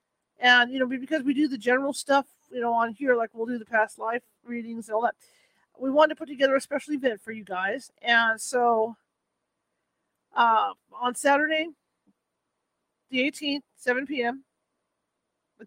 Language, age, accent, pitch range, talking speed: English, 40-59, American, 225-270 Hz, 170 wpm